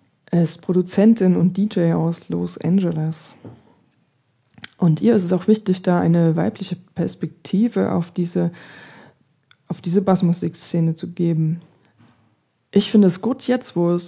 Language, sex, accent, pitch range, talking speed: German, female, German, 170-190 Hz, 130 wpm